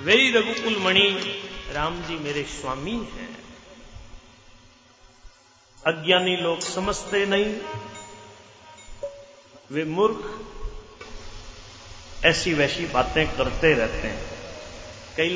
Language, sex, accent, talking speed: Hindi, male, native, 80 wpm